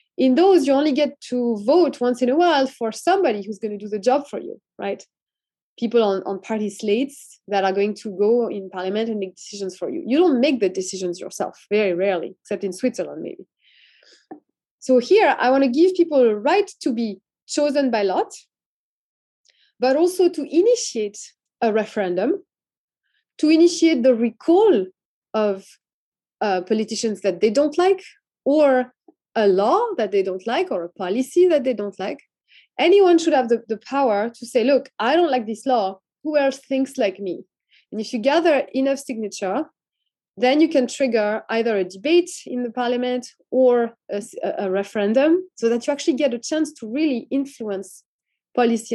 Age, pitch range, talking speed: 20-39, 205-290 Hz, 180 wpm